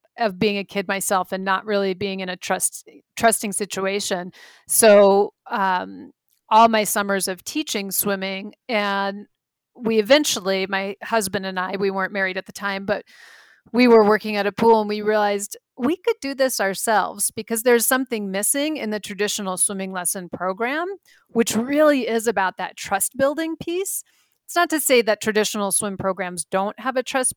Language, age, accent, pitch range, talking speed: English, 40-59, American, 190-235 Hz, 175 wpm